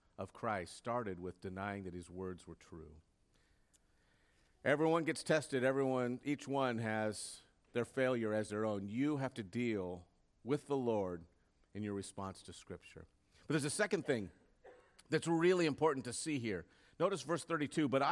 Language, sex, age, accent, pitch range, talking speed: English, male, 50-69, American, 110-170 Hz, 160 wpm